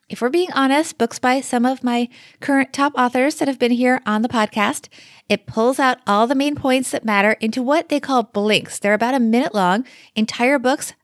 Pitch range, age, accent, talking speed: 205-275 Hz, 30-49, American, 215 wpm